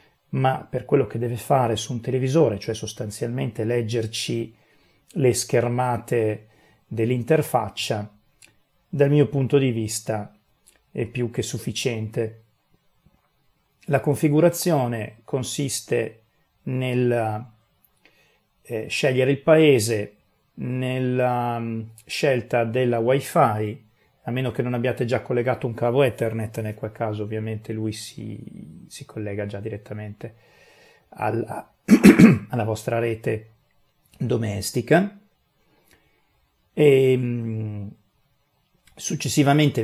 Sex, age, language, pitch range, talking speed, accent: male, 40-59, Italian, 110-135 Hz, 95 wpm, native